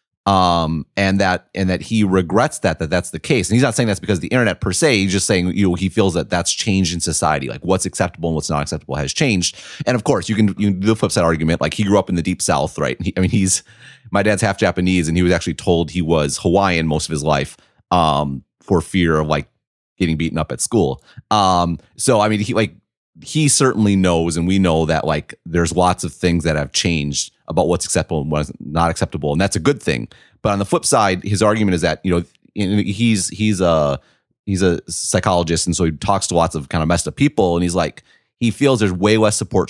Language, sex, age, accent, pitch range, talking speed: English, male, 30-49, American, 85-105 Hz, 250 wpm